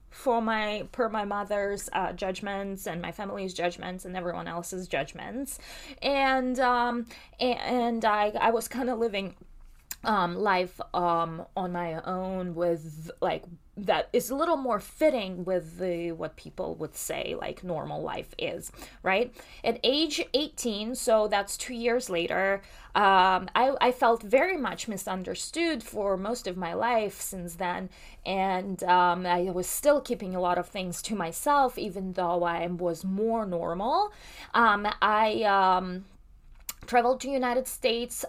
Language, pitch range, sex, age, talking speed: English, 185-235 Hz, female, 20-39, 150 wpm